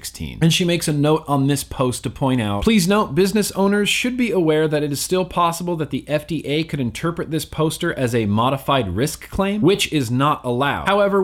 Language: English